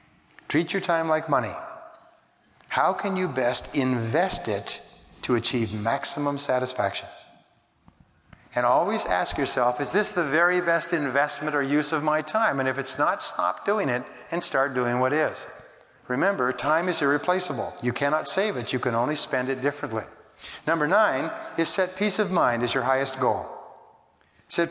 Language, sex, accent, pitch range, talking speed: English, male, American, 125-165 Hz, 165 wpm